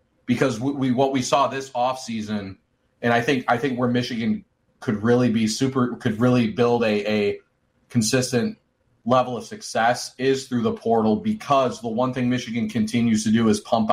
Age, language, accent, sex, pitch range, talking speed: 30-49, English, American, male, 115-130 Hz, 185 wpm